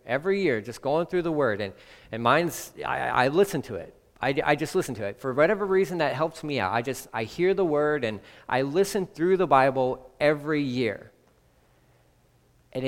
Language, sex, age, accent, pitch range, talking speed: English, male, 40-59, American, 125-180 Hz, 200 wpm